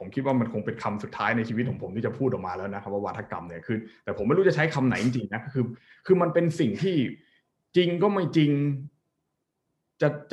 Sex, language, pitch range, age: male, Thai, 105-145 Hz, 20-39